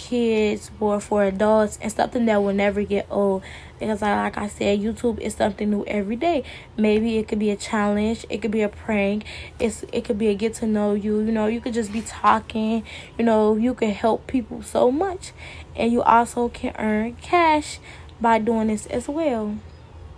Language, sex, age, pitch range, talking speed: English, female, 10-29, 210-240 Hz, 195 wpm